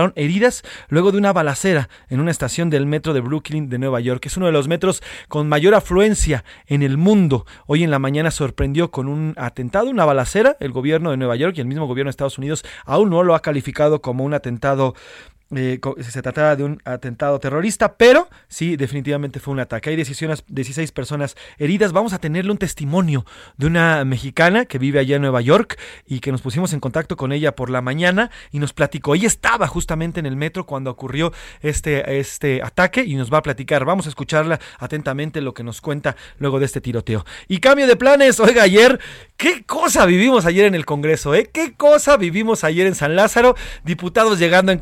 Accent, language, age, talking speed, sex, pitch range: Mexican, Spanish, 30-49, 205 wpm, male, 140-185 Hz